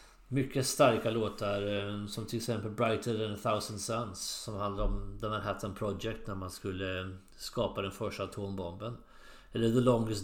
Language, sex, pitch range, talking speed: English, male, 105-130 Hz, 160 wpm